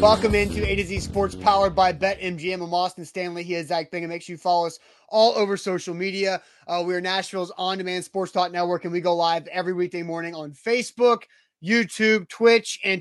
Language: English